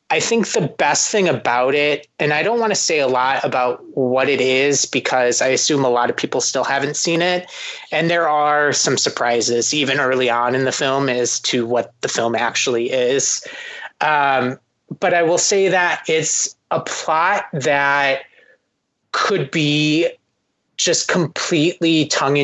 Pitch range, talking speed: 125-165 Hz, 170 wpm